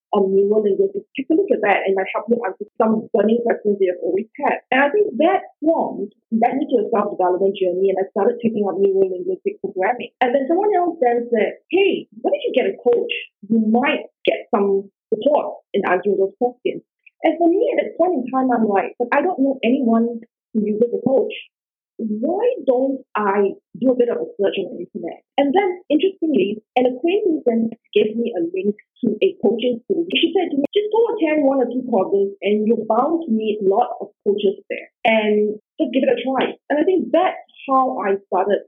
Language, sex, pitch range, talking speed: English, female, 205-320 Hz, 220 wpm